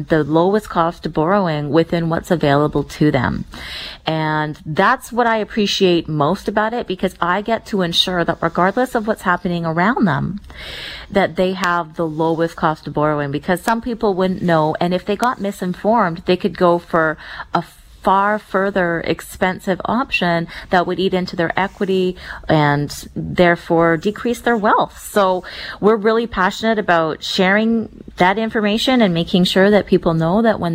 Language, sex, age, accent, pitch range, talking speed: English, female, 30-49, American, 165-205 Hz, 165 wpm